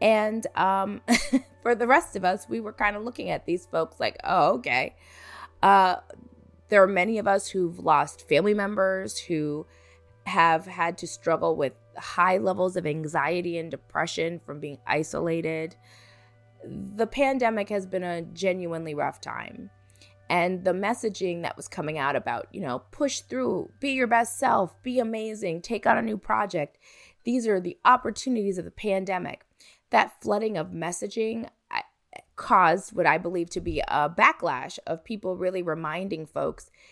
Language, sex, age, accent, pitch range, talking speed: English, female, 20-39, American, 155-215 Hz, 160 wpm